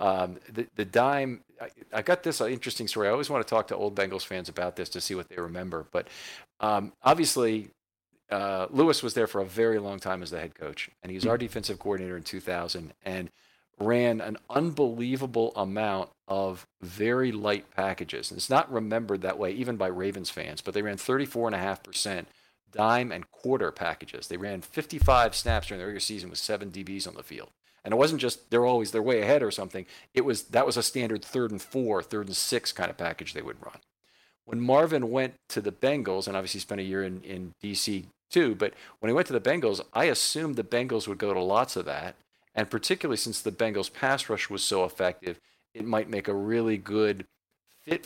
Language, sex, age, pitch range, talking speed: English, male, 50-69, 95-115 Hz, 215 wpm